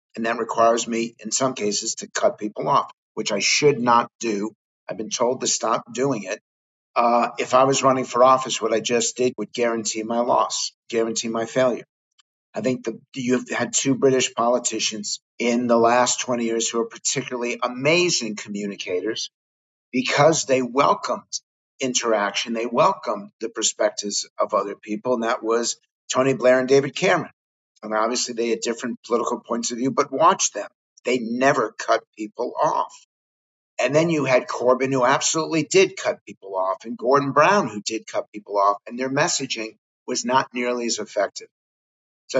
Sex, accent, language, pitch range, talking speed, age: male, American, English, 115-130 Hz, 175 wpm, 50-69